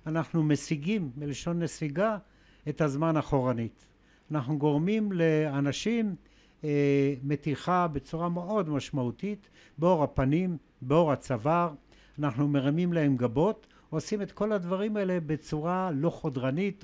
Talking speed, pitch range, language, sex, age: 110 wpm, 140-180 Hz, Hebrew, male, 60-79